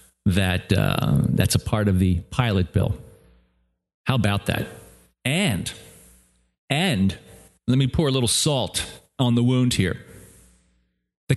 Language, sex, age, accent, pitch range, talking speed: English, male, 40-59, American, 90-130 Hz, 130 wpm